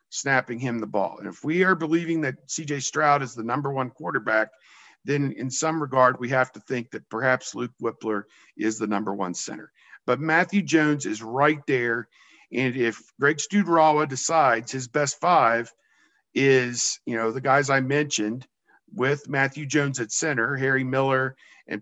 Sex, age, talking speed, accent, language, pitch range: male, 50-69, 175 wpm, American, English, 135-200 Hz